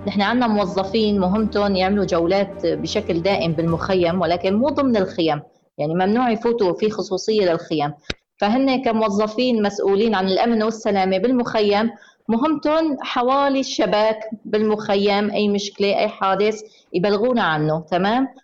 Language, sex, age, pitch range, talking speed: Arabic, female, 20-39, 175-225 Hz, 120 wpm